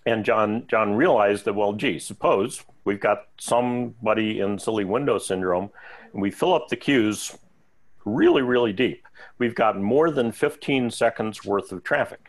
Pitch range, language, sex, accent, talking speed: 95-120 Hz, English, male, American, 160 wpm